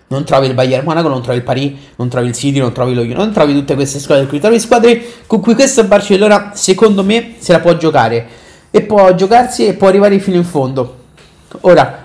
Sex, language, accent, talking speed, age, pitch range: male, Italian, native, 220 wpm, 30-49, 140-185 Hz